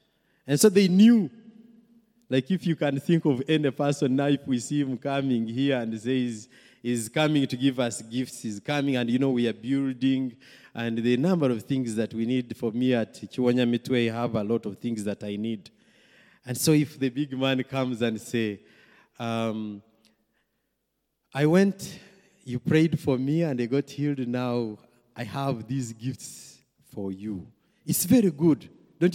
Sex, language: male, English